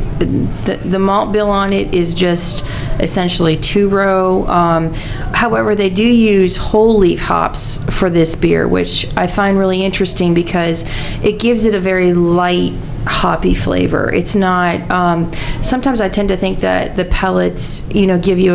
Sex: female